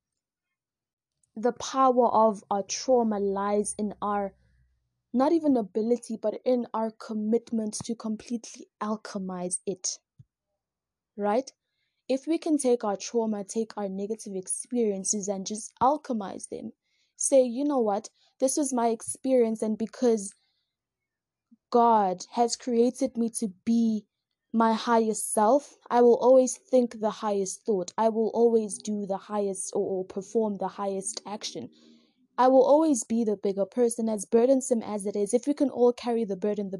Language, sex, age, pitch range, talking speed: English, female, 20-39, 205-245 Hz, 150 wpm